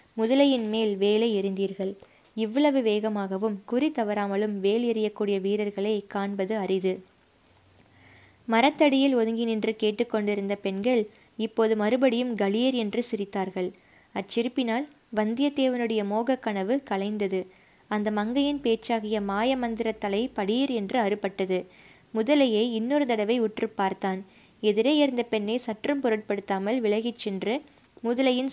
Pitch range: 205-245 Hz